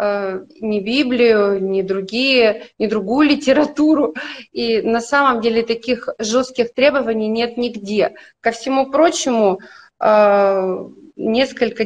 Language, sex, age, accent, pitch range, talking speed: Russian, female, 30-49, native, 205-250 Hz, 100 wpm